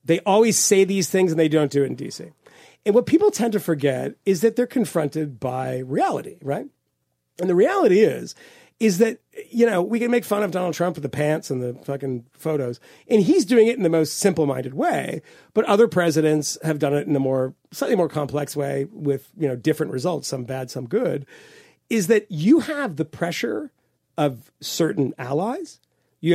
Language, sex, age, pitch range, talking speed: English, male, 40-59, 150-210 Hz, 205 wpm